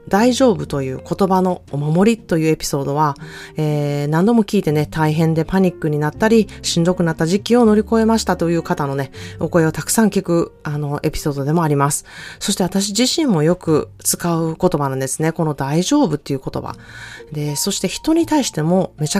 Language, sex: Japanese, female